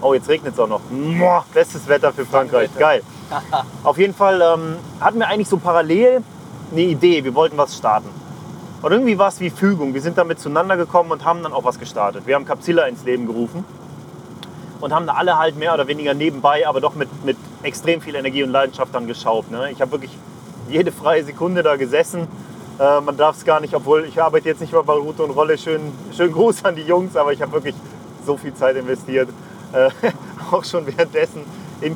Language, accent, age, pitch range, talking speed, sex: German, German, 30-49, 145-185 Hz, 215 wpm, male